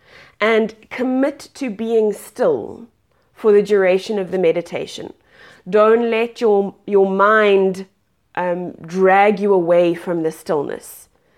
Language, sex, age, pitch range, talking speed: English, female, 30-49, 195-245 Hz, 120 wpm